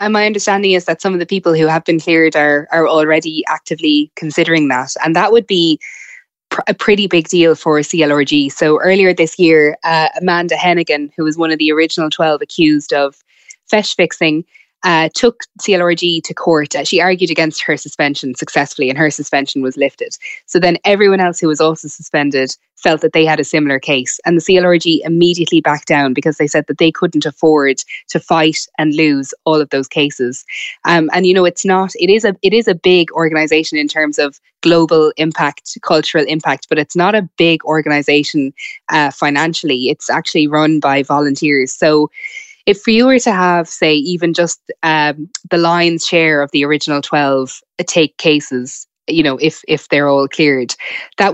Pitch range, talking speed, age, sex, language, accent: 150-175 Hz, 190 wpm, 20-39, female, English, Irish